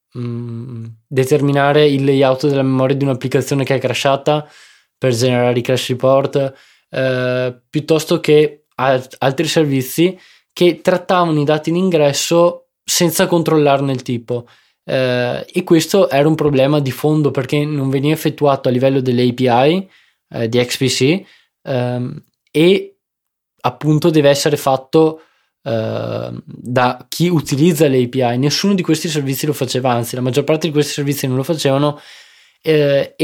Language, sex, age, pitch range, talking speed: Italian, male, 20-39, 130-150 Hz, 135 wpm